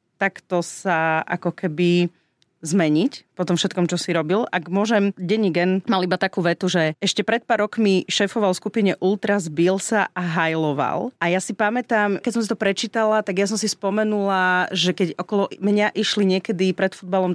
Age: 30-49